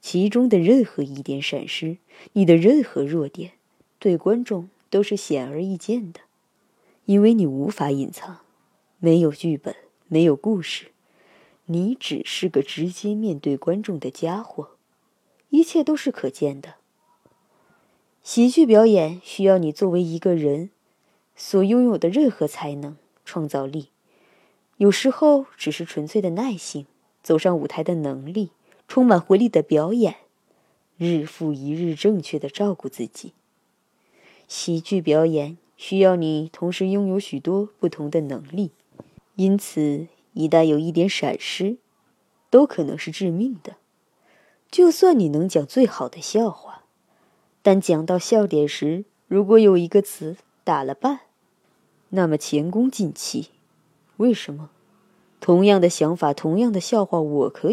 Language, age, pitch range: Chinese, 20-39, 160-215 Hz